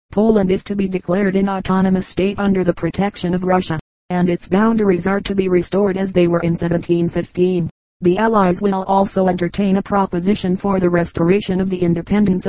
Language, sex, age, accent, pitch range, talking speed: English, female, 40-59, American, 175-195 Hz, 185 wpm